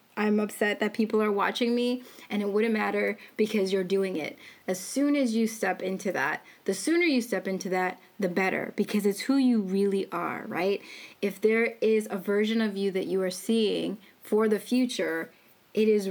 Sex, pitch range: female, 195-245 Hz